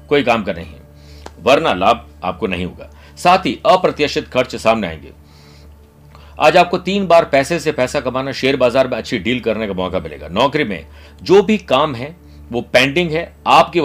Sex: male